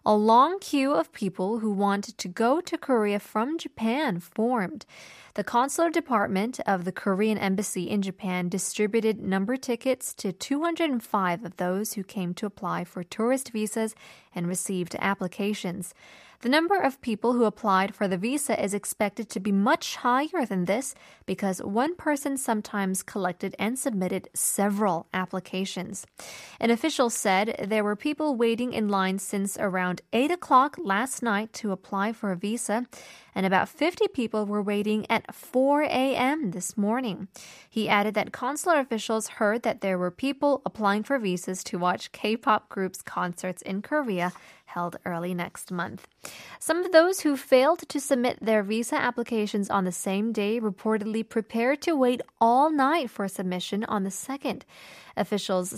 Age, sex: 20-39, female